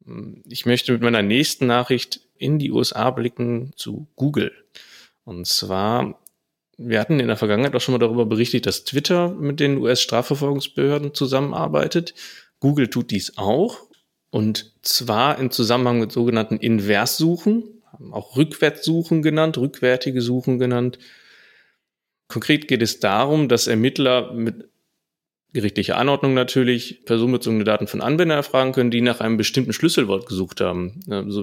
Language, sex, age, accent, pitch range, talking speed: German, male, 30-49, German, 105-135 Hz, 135 wpm